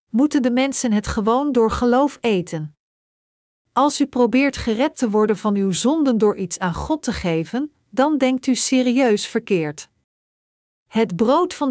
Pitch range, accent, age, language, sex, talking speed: 195-250 Hz, Dutch, 50-69, Dutch, female, 160 wpm